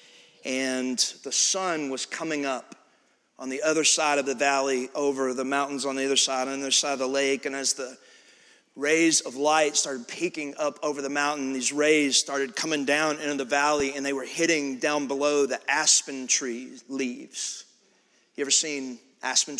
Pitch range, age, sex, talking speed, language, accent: 140-160 Hz, 40-59, male, 185 wpm, English, American